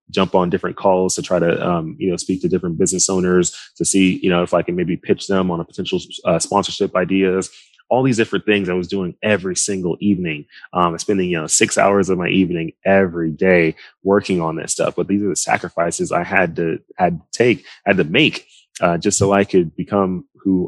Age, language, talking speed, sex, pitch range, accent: 20-39, English, 225 wpm, male, 90-100 Hz, American